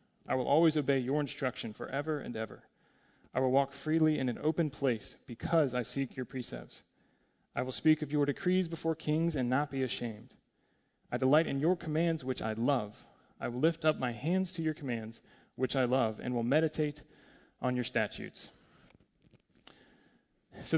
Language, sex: English, male